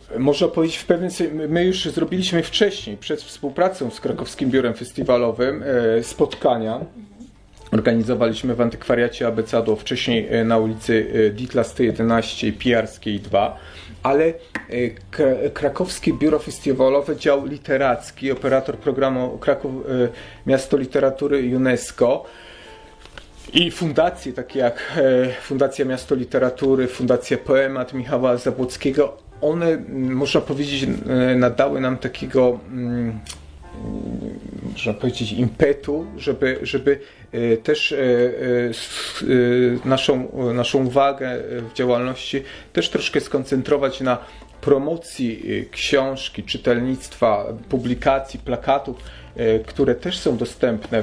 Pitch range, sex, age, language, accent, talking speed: 115-140 Hz, male, 30-49, Polish, native, 95 wpm